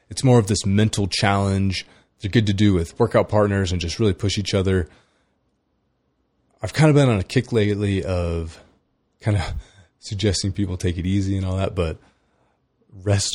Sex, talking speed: male, 180 wpm